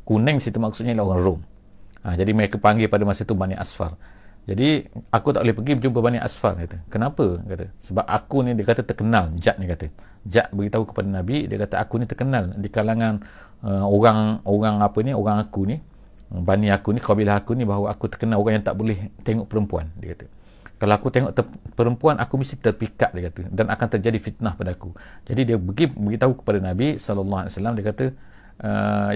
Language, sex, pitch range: English, male, 100-115 Hz